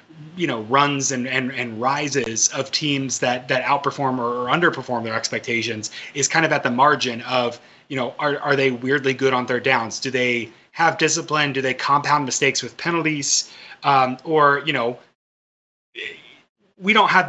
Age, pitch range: 30-49, 125-155 Hz